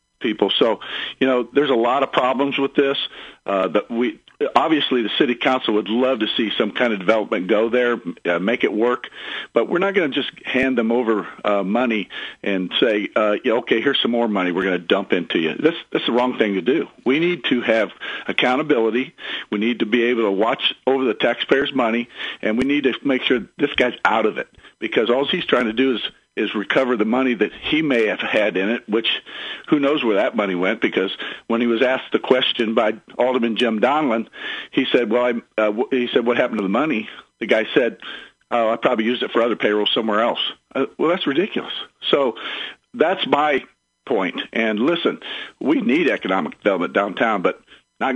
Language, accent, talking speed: English, American, 210 wpm